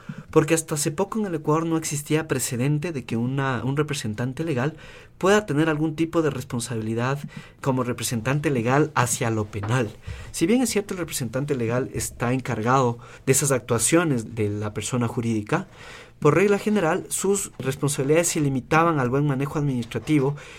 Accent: Mexican